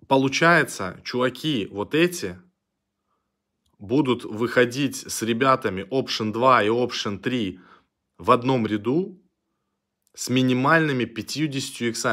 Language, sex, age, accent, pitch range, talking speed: Russian, male, 20-39, native, 100-130 Hz, 95 wpm